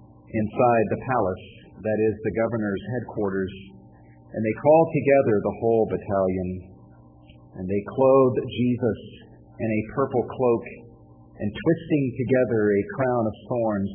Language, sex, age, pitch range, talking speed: English, male, 40-59, 95-120 Hz, 130 wpm